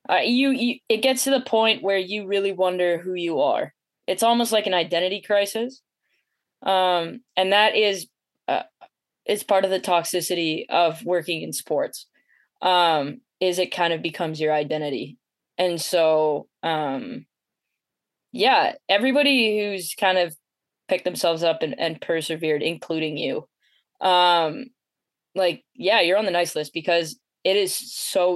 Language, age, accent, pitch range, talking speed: English, 10-29, American, 165-195 Hz, 150 wpm